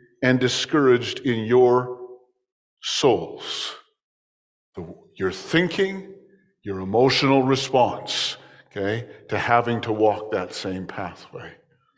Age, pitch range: 50-69, 110-165 Hz